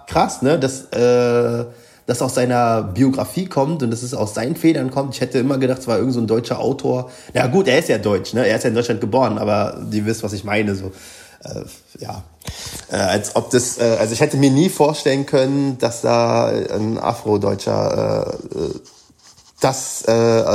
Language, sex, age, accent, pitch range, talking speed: German, male, 30-49, German, 110-135 Hz, 195 wpm